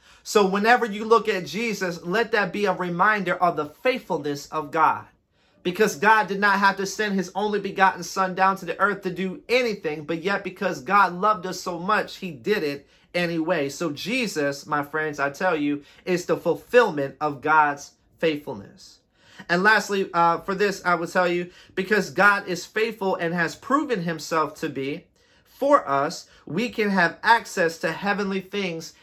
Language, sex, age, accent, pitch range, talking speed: English, male, 40-59, American, 165-205 Hz, 180 wpm